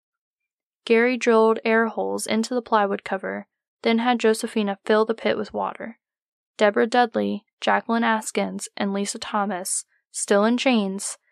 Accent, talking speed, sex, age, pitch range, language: American, 140 wpm, female, 10-29, 205-240 Hz, English